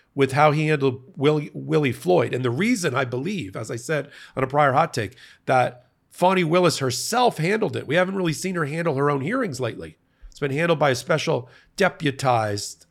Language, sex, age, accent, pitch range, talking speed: English, male, 50-69, American, 120-150 Hz, 200 wpm